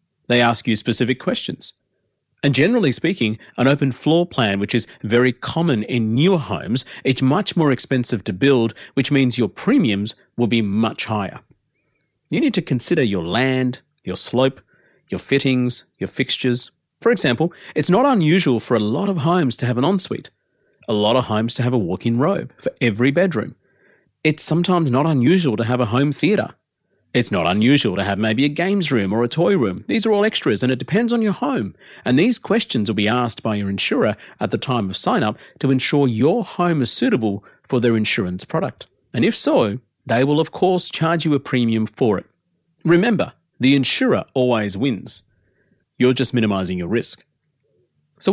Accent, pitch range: Australian, 115-160 Hz